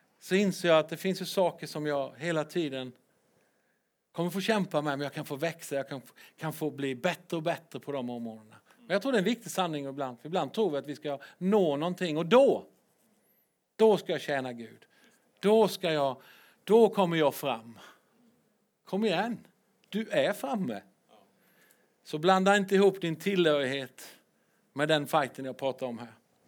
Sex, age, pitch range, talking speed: male, 50-69, 140-190 Hz, 180 wpm